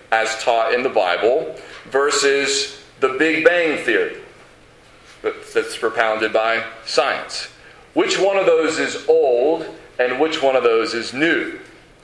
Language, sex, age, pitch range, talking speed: English, male, 40-59, 125-195 Hz, 135 wpm